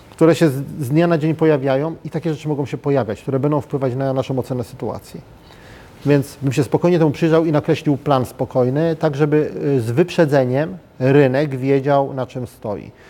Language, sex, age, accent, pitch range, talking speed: Polish, male, 30-49, native, 130-155 Hz, 180 wpm